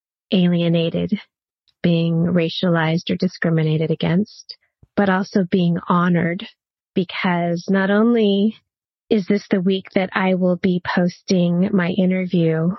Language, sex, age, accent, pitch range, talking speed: English, female, 30-49, American, 175-205 Hz, 115 wpm